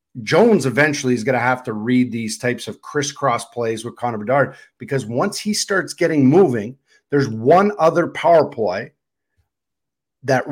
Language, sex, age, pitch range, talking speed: English, male, 40-59, 125-150 Hz, 160 wpm